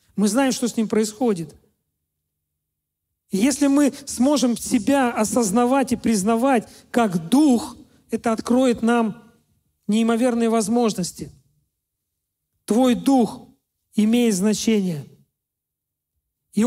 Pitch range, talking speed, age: 215-260 Hz, 90 wpm, 40-59